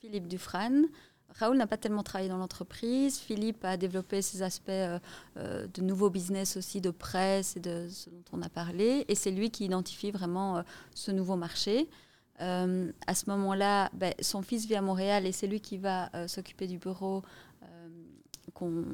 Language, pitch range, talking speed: French, 180-205 Hz, 185 wpm